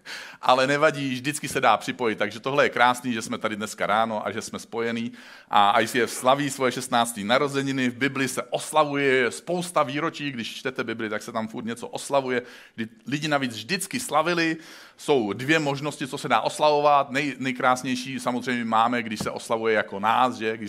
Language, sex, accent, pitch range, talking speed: Czech, male, native, 115-145 Hz, 185 wpm